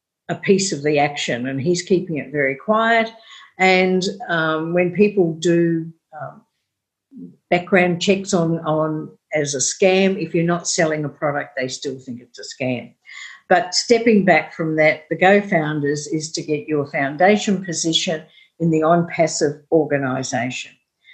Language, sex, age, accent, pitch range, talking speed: English, female, 50-69, Australian, 150-185 Hz, 155 wpm